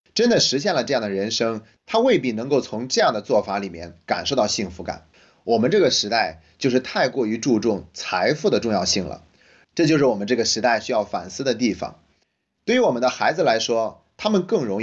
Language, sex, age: Chinese, male, 30-49